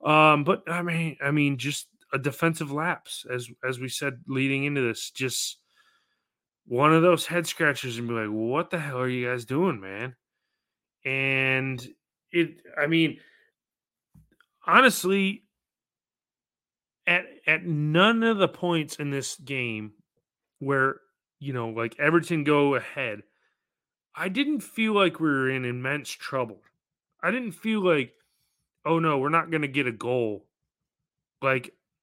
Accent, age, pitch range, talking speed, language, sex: American, 30-49, 130-170 Hz, 145 wpm, English, male